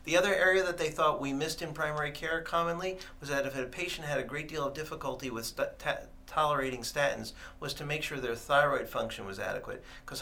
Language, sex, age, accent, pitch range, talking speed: English, male, 50-69, American, 120-155 Hz, 225 wpm